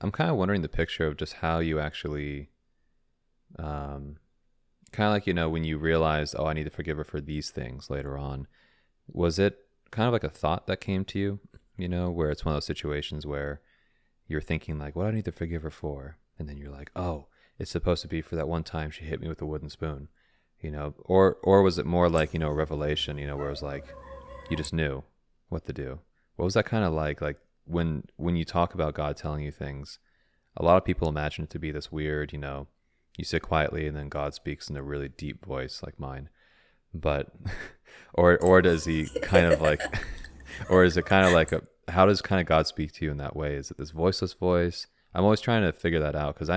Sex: male